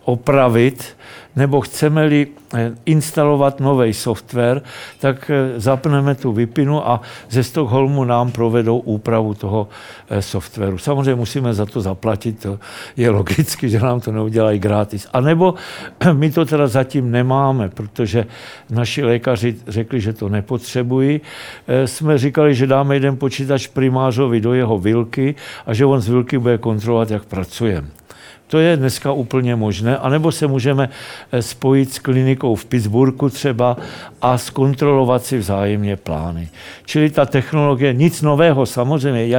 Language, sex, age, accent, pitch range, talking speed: Czech, male, 60-79, native, 115-140 Hz, 135 wpm